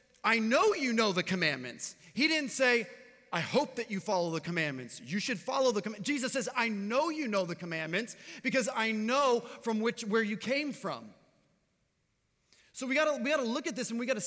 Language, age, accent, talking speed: English, 30-49, American, 210 wpm